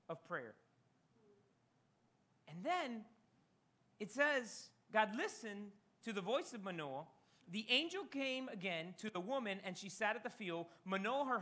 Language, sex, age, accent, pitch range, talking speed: English, male, 30-49, American, 165-230 Hz, 145 wpm